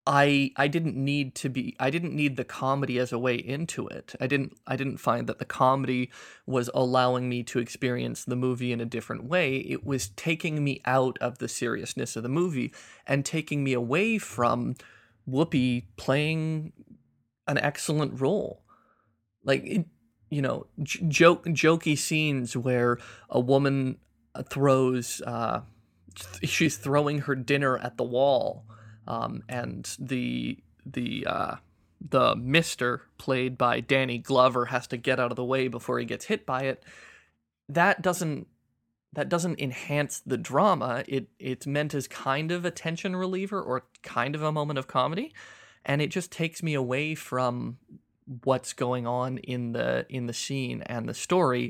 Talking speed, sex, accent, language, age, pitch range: 160 wpm, male, American, English, 20-39, 125-150 Hz